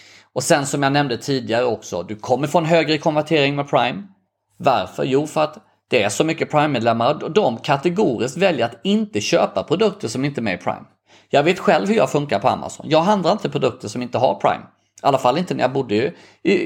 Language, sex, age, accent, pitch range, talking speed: Swedish, male, 30-49, native, 110-155 Hz, 225 wpm